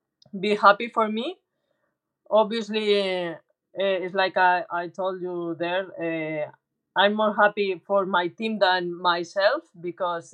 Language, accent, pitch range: English, Spanish, 180-210 Hz